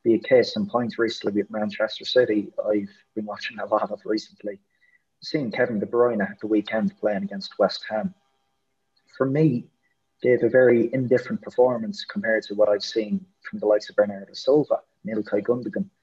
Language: English